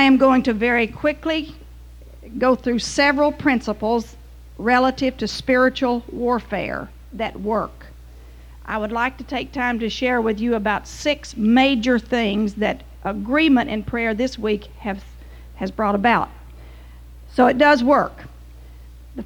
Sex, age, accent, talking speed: female, 50-69, American, 140 wpm